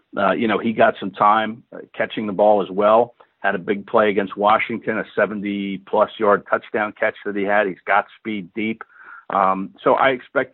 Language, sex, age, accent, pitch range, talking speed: English, male, 50-69, American, 105-125 Hz, 195 wpm